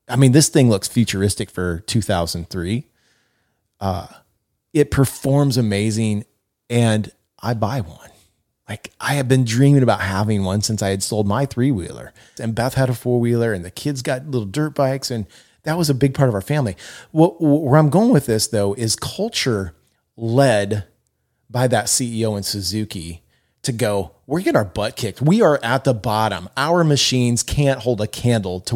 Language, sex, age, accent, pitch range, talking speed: English, male, 30-49, American, 100-130 Hz, 180 wpm